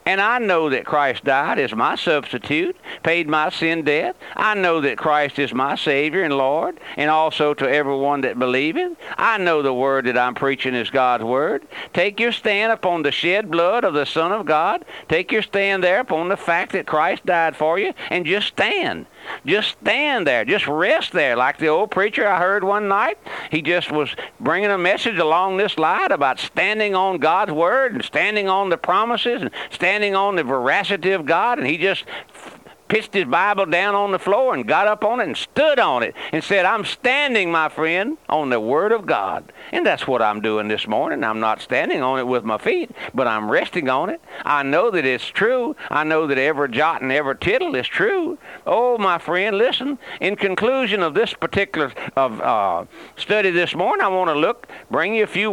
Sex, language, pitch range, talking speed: male, English, 150-210 Hz, 210 wpm